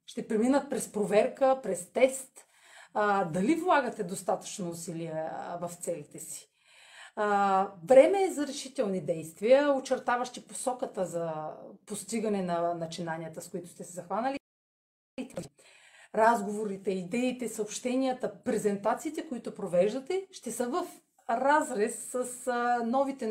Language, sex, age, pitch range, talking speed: Bulgarian, female, 30-49, 190-260 Hz, 110 wpm